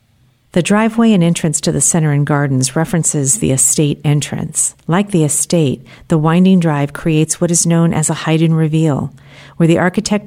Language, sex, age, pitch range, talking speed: English, female, 50-69, 140-175 Hz, 180 wpm